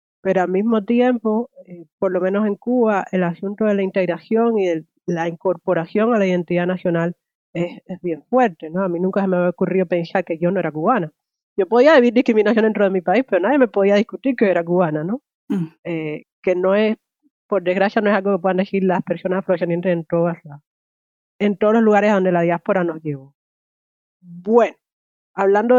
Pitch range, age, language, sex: 175-215 Hz, 30-49, Spanish, female